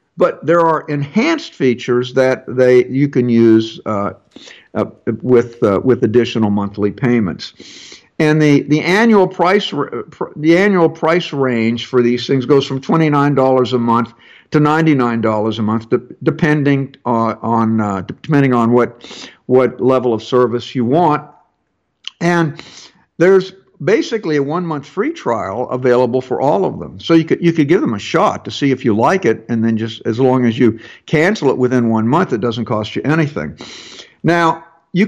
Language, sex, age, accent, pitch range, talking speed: English, male, 60-79, American, 120-165 Hz, 170 wpm